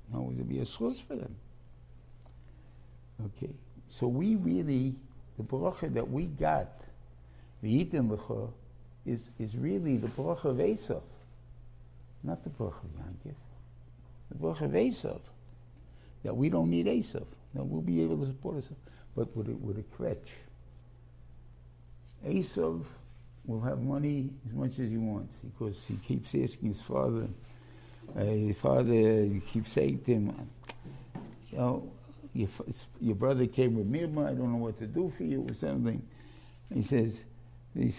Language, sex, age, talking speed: English, male, 60-79, 155 wpm